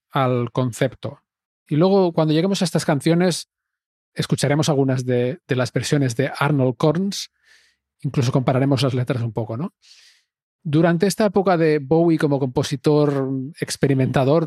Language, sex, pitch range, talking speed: Spanish, male, 135-160 Hz, 135 wpm